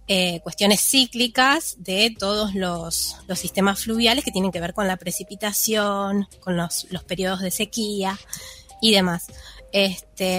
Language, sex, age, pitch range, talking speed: Spanish, female, 20-39, 185-230 Hz, 145 wpm